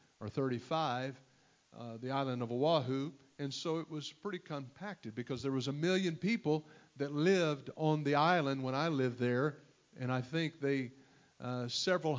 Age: 50-69